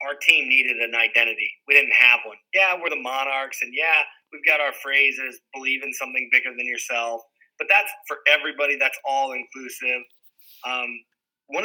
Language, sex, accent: English, male, American